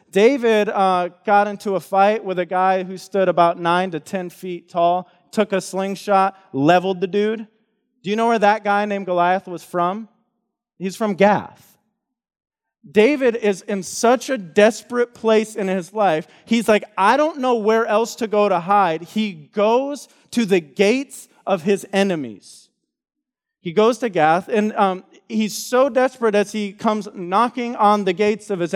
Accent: American